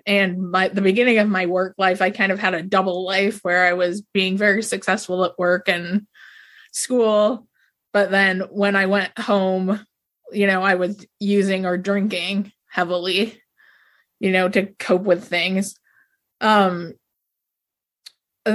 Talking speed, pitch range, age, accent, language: 150 wpm, 185-210 Hz, 20-39, American, English